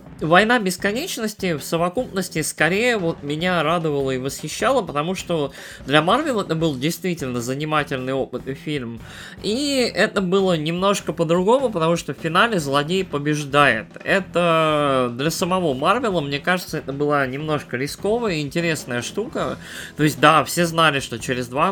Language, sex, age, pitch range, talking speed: Russian, male, 20-39, 125-175 Hz, 145 wpm